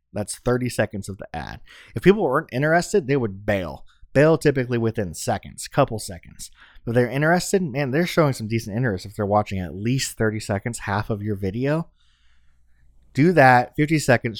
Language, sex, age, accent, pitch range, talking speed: English, male, 30-49, American, 100-130 Hz, 180 wpm